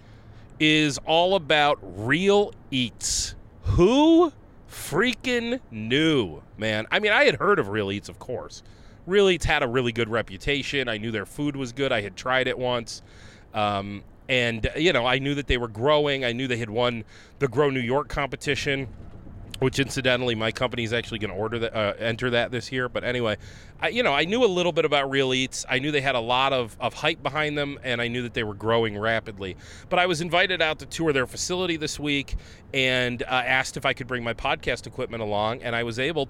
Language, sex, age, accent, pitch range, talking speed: English, male, 30-49, American, 110-140 Hz, 210 wpm